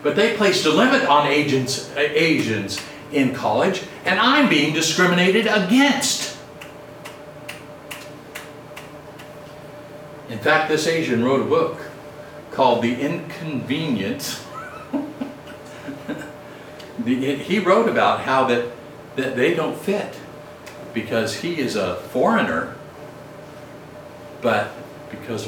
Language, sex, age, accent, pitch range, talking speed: English, male, 60-79, American, 140-175 Hz, 95 wpm